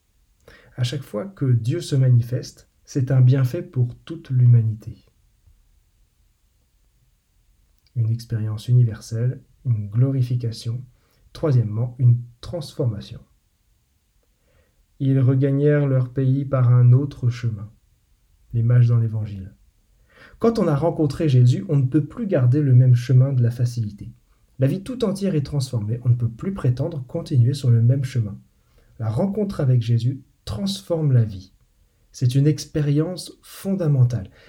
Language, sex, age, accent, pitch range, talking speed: French, male, 40-59, French, 120-150 Hz, 130 wpm